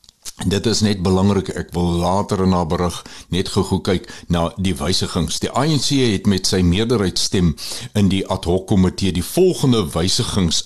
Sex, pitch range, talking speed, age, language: male, 85-115 Hz, 175 wpm, 60-79, Swedish